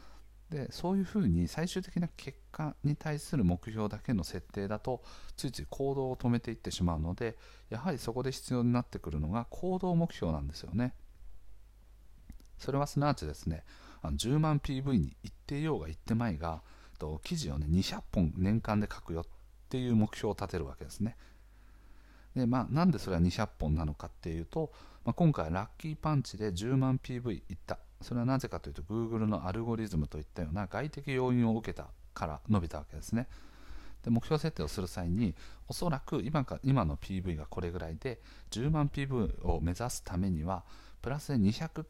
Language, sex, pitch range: Japanese, male, 90-130 Hz